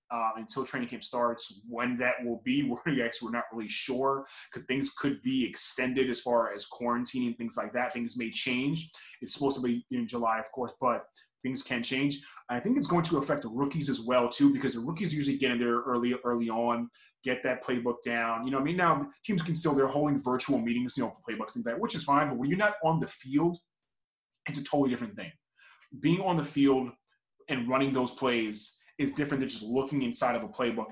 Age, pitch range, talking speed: 20-39, 120-145 Hz, 230 wpm